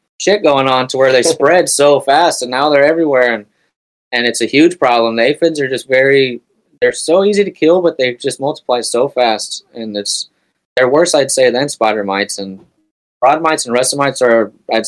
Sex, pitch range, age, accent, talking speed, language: male, 100-125 Hz, 20-39, American, 205 wpm, English